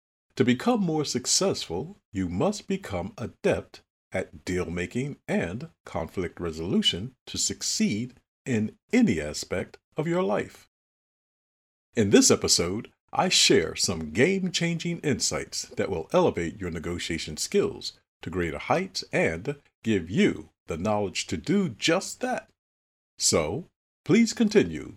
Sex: male